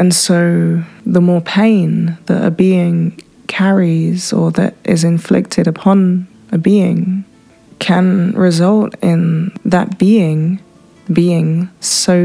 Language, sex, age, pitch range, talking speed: English, female, 20-39, 165-190 Hz, 115 wpm